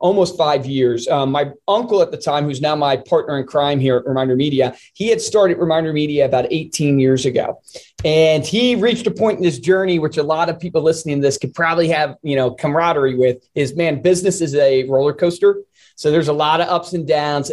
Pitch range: 140-175 Hz